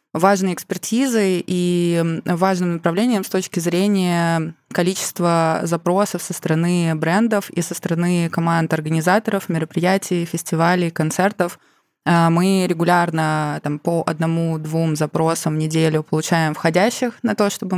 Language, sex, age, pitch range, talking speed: Russian, female, 20-39, 160-185 Hz, 120 wpm